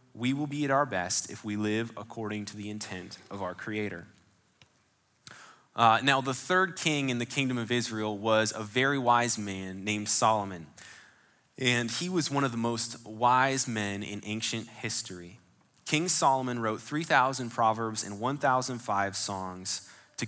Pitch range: 105-135 Hz